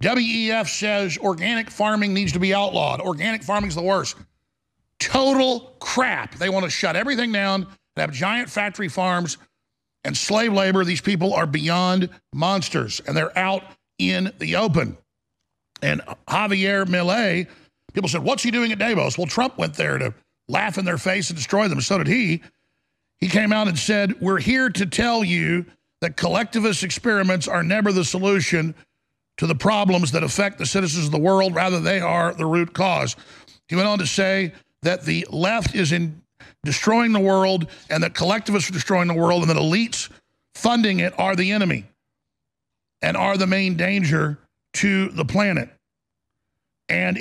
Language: English